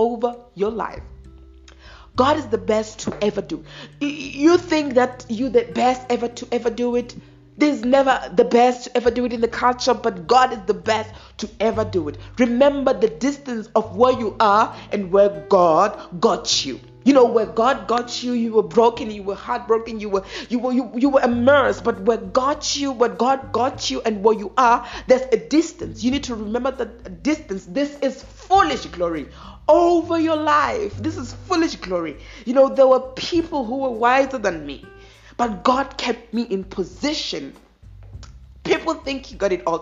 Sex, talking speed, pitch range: female, 195 wpm, 185-250 Hz